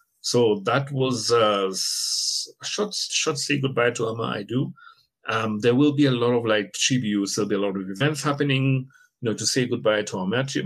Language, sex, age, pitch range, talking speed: English, male, 50-69, 105-140 Hz, 205 wpm